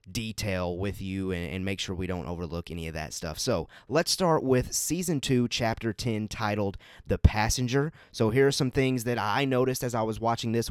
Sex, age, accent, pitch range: male, 30-49, American, 95-125 Hz